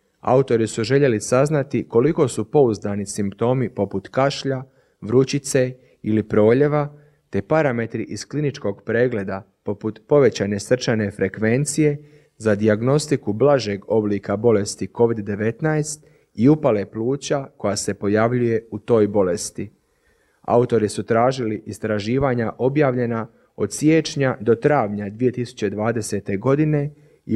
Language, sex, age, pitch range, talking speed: Croatian, male, 30-49, 105-135 Hz, 105 wpm